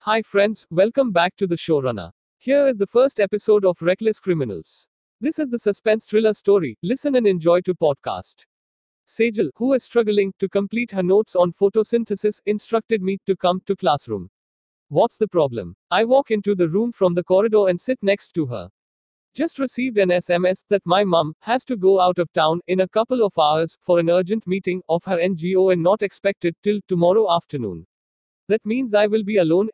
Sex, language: male, English